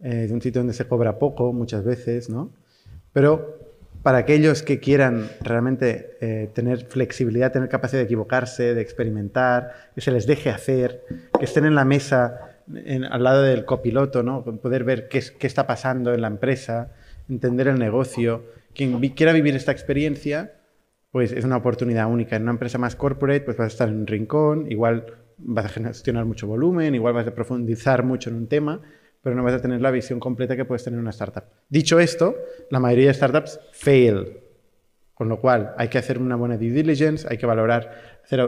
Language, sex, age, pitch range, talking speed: Spanish, male, 20-39, 120-140 Hz, 200 wpm